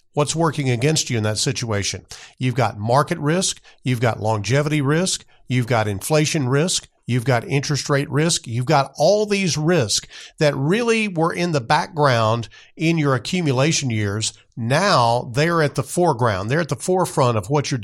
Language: English